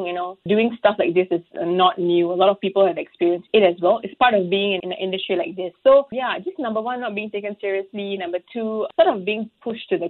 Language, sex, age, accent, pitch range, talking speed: English, female, 20-39, Malaysian, 185-215 Hz, 260 wpm